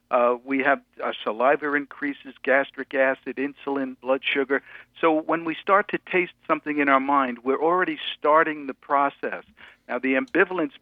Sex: male